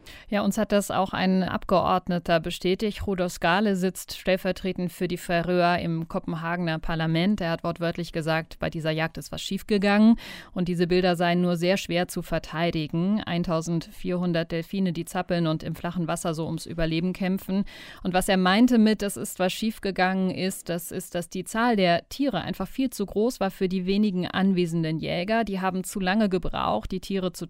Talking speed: 185 wpm